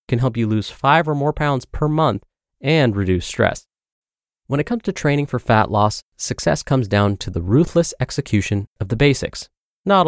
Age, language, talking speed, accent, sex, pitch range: 30-49, English, 190 wpm, American, male, 100-145 Hz